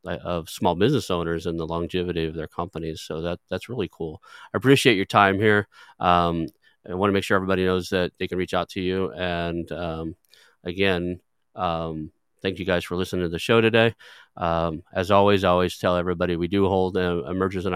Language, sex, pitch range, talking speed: English, male, 85-95 Hz, 205 wpm